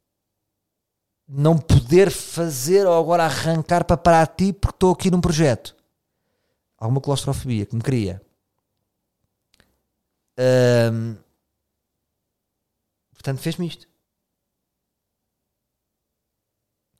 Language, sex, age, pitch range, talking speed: Portuguese, male, 40-59, 100-130 Hz, 85 wpm